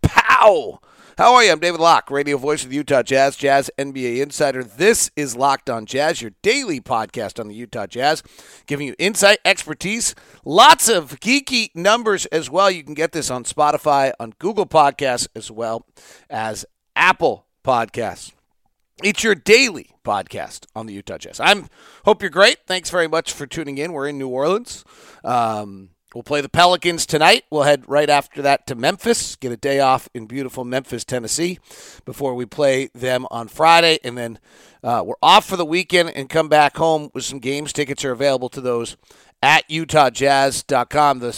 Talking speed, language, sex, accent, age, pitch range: 180 wpm, English, male, American, 40-59, 130-165 Hz